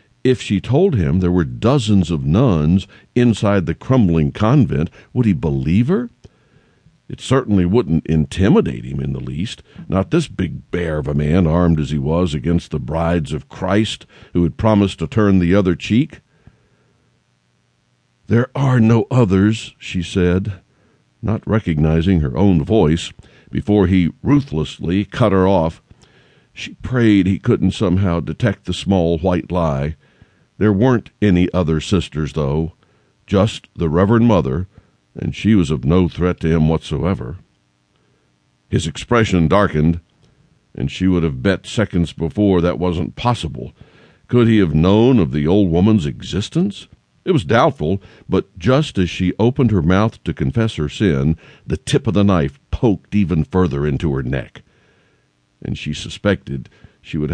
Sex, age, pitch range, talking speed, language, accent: male, 60-79, 80-105 Hz, 155 wpm, English, American